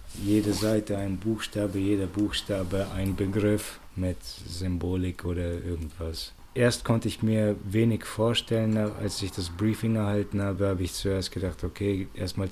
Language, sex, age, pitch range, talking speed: German, male, 20-39, 90-105 Hz, 145 wpm